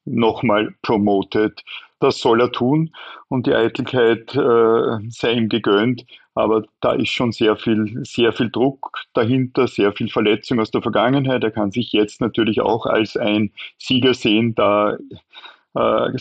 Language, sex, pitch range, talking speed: German, male, 110-120 Hz, 150 wpm